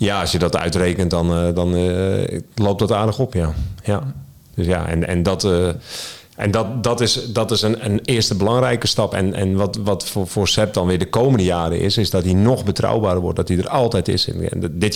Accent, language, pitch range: Dutch, Dutch, 90-110 Hz